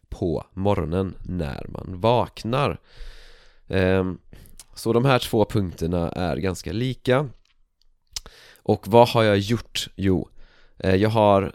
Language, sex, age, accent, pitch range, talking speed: Swedish, male, 30-49, native, 90-115 Hz, 110 wpm